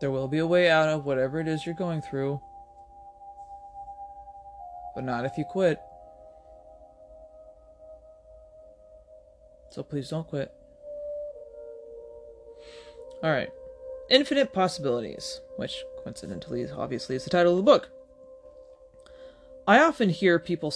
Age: 20-39